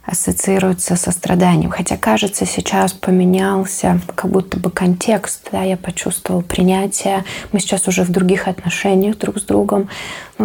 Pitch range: 175-205 Hz